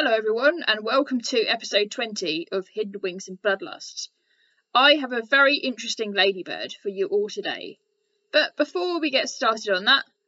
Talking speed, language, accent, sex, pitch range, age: 170 wpm, English, British, female, 215-270 Hz, 10-29